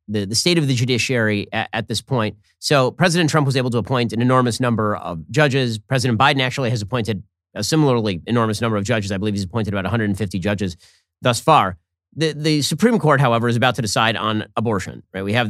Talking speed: 215 wpm